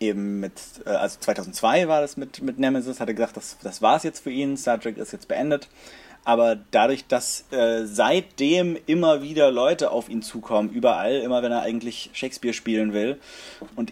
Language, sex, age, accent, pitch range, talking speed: German, male, 30-49, German, 105-135 Hz, 190 wpm